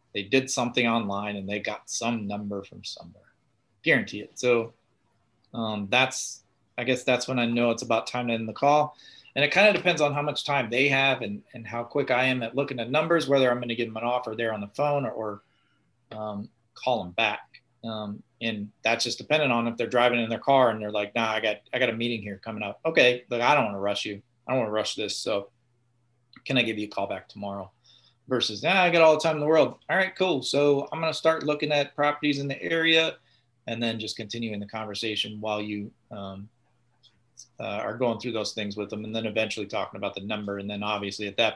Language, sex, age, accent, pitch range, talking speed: English, male, 30-49, American, 110-130 Hz, 245 wpm